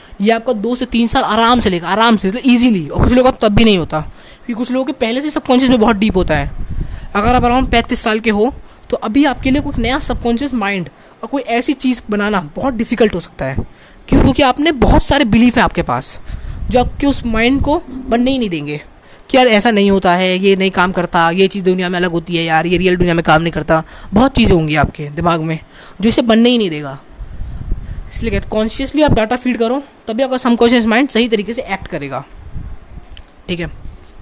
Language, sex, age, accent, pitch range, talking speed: Hindi, female, 20-39, native, 180-245 Hz, 230 wpm